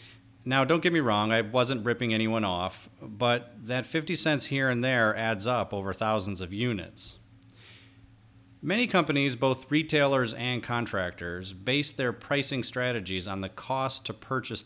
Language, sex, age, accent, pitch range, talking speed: English, male, 30-49, American, 110-135 Hz, 155 wpm